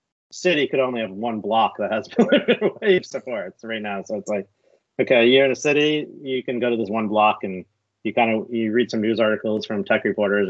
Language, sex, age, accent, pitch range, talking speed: English, male, 30-49, American, 105-130 Hz, 230 wpm